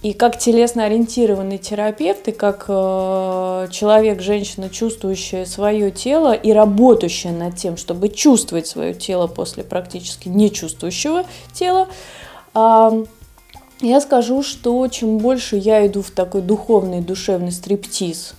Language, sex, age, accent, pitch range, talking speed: Russian, female, 20-39, native, 180-220 Hz, 115 wpm